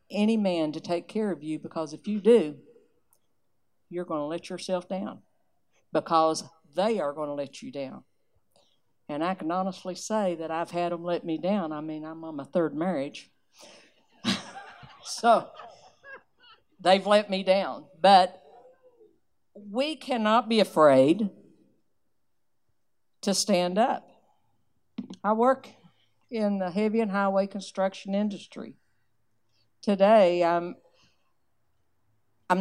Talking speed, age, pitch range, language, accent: 125 wpm, 60-79, 155-210 Hz, English, American